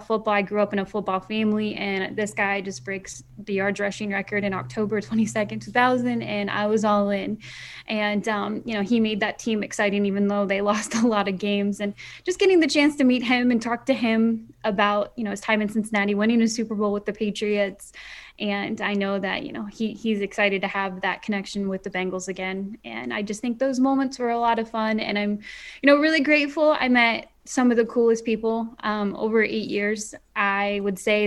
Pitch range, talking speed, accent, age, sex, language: 205-225 Hz, 230 wpm, American, 10-29, female, English